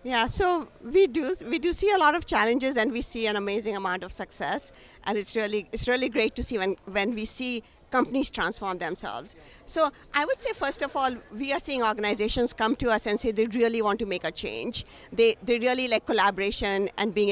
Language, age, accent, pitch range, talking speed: English, 50-69, Indian, 195-240 Hz, 220 wpm